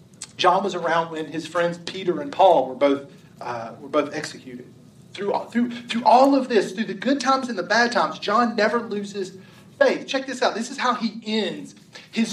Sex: male